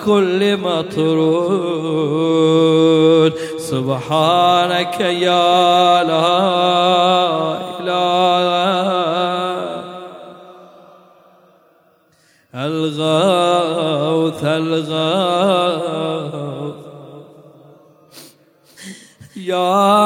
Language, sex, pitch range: Arabic, male, 150-180 Hz